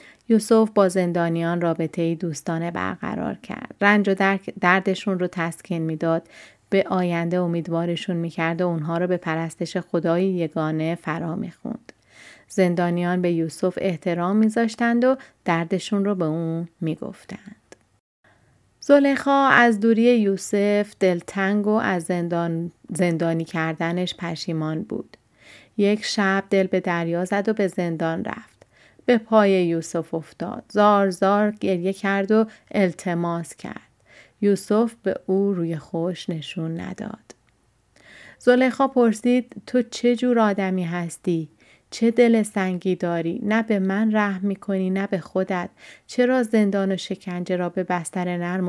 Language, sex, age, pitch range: Persian, female, 30-49, 170-210 Hz